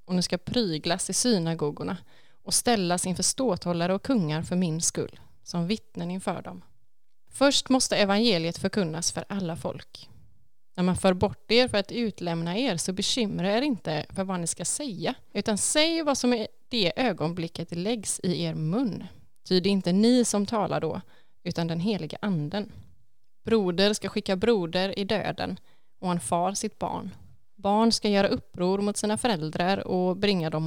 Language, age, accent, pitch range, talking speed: Swedish, 20-39, native, 165-215 Hz, 170 wpm